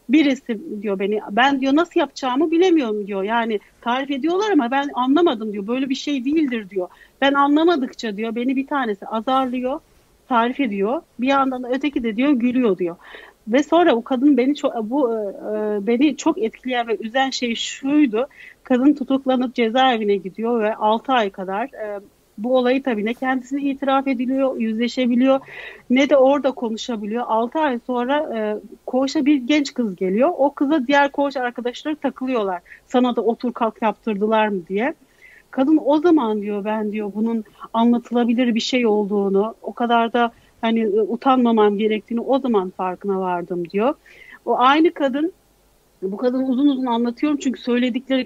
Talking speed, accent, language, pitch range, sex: 155 wpm, native, Turkish, 220-275 Hz, female